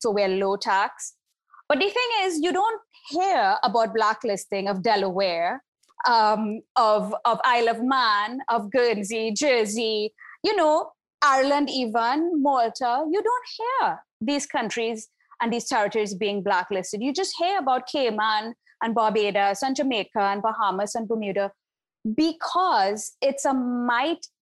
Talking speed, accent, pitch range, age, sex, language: 140 wpm, Indian, 215-325 Hz, 20-39, female, English